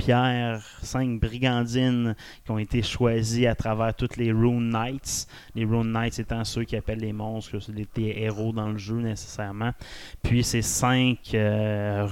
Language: French